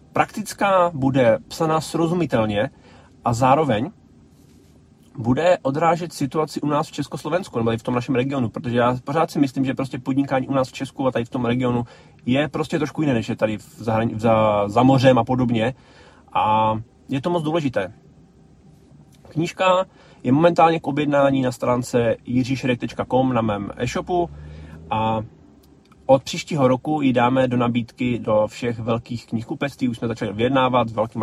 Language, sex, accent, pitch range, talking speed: Czech, male, native, 115-150 Hz, 165 wpm